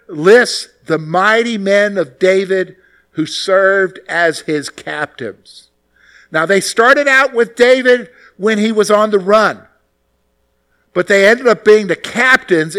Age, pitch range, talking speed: 50-69, 135-205 Hz, 140 wpm